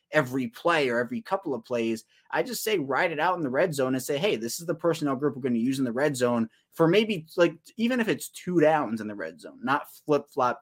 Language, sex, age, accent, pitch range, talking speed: English, male, 20-39, American, 115-155 Hz, 270 wpm